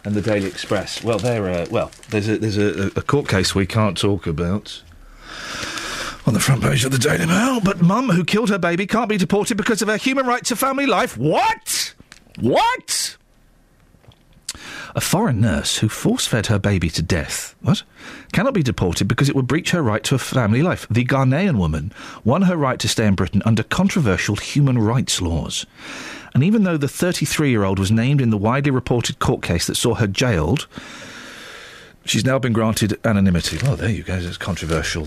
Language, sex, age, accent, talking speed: English, male, 40-59, British, 190 wpm